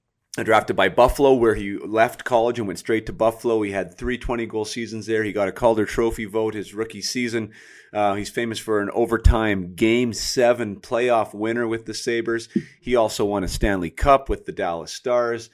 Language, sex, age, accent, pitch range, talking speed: English, male, 30-49, American, 95-115 Hz, 195 wpm